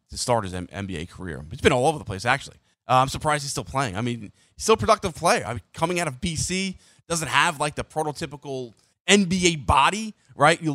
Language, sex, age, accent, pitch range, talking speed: English, male, 30-49, American, 115-155 Hz, 235 wpm